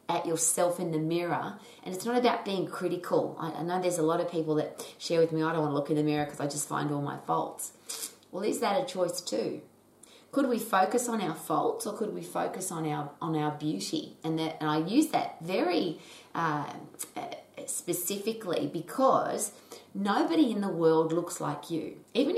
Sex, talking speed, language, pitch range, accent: female, 205 wpm, English, 155-195 Hz, Australian